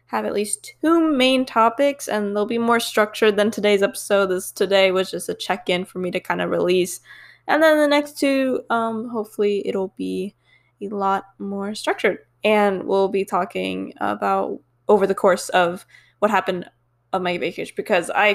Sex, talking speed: female, 180 wpm